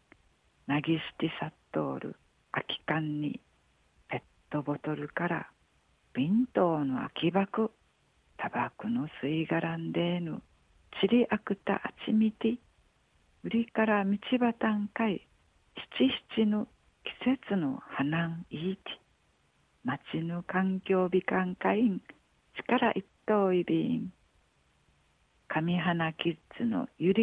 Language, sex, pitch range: Japanese, female, 155-215 Hz